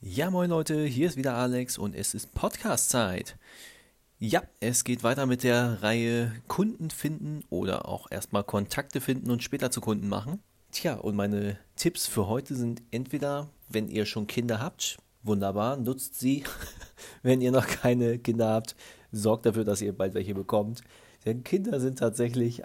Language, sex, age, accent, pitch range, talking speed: German, male, 30-49, German, 105-130 Hz, 165 wpm